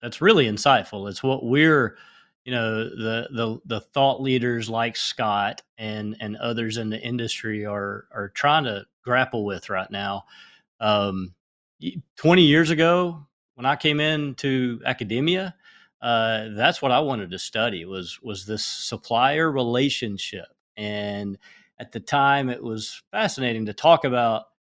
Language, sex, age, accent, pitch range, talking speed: English, male, 30-49, American, 105-130 Hz, 145 wpm